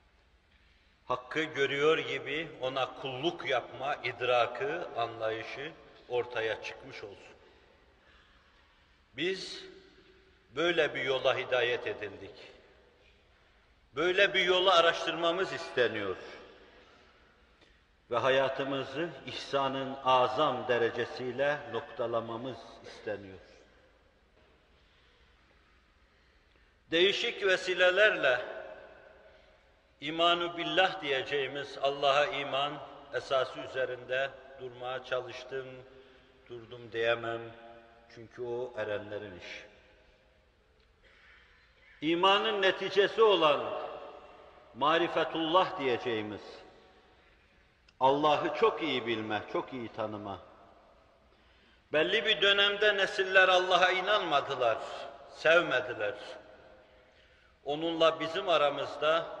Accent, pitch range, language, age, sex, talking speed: native, 115-170 Hz, Turkish, 50-69, male, 70 wpm